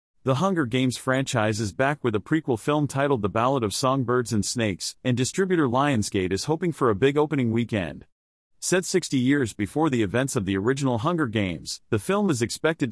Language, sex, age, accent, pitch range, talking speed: English, male, 40-59, American, 110-150 Hz, 195 wpm